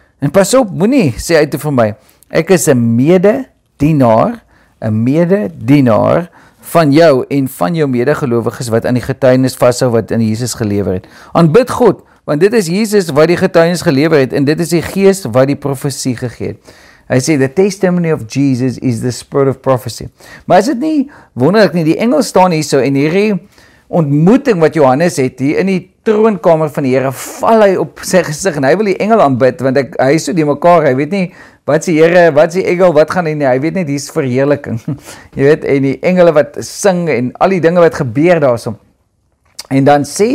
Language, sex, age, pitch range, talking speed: English, male, 50-69, 130-175 Hz, 215 wpm